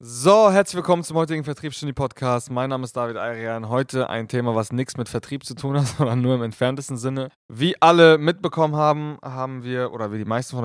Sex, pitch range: male, 115-140 Hz